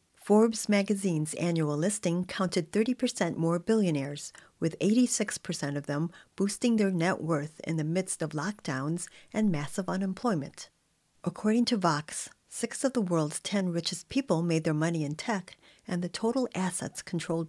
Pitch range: 160-205 Hz